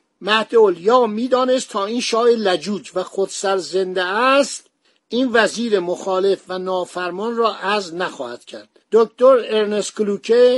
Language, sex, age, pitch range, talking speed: Persian, male, 60-79, 180-225 Hz, 135 wpm